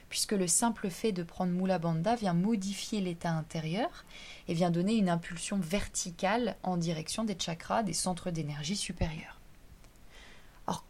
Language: French